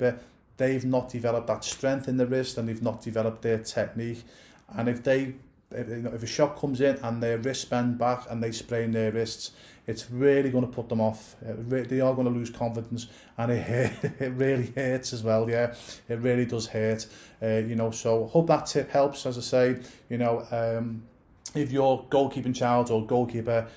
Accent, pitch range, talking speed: British, 115-135 Hz, 210 wpm